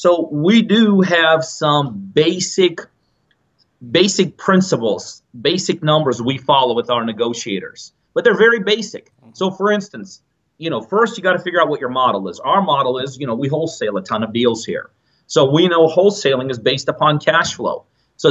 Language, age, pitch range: English, 30-49, 140-190 Hz